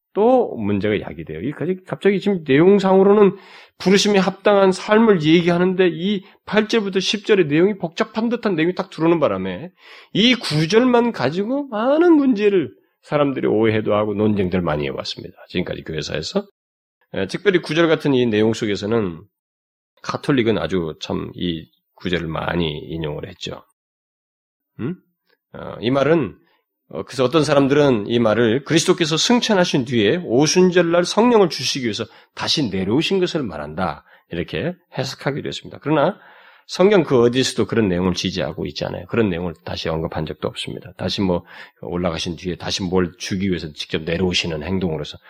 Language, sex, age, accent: Korean, male, 30-49, native